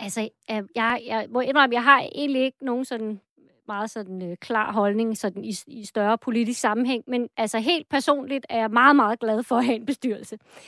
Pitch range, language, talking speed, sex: 220-275 Hz, Danish, 195 wpm, female